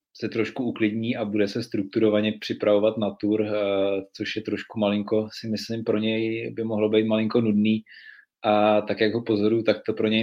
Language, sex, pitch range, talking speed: Czech, male, 100-110 Hz, 190 wpm